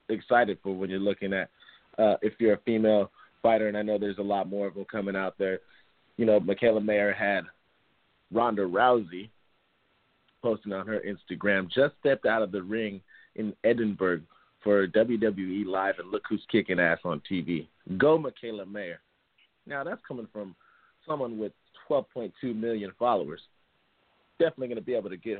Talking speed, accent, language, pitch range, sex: 170 wpm, American, English, 95-115 Hz, male